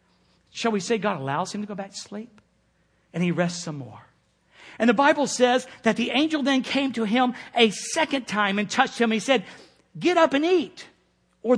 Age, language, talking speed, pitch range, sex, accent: 50-69, English, 205 wpm, 160-235 Hz, male, American